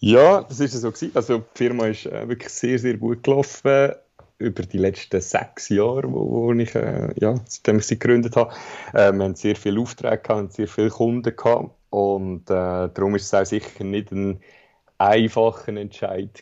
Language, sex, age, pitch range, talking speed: German, male, 30-49, 100-120 Hz, 190 wpm